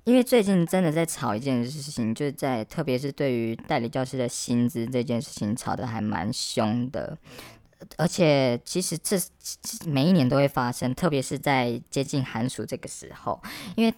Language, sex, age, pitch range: Chinese, male, 20-39, 125-160 Hz